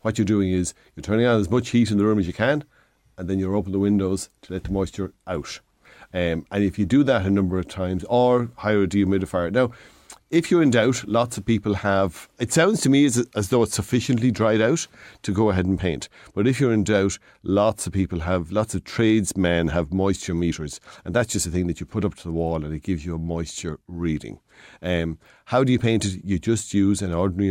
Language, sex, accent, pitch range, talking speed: English, male, Irish, 90-110 Hz, 240 wpm